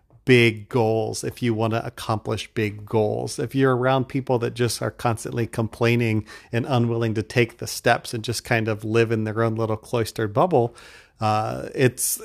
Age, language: 40-59, English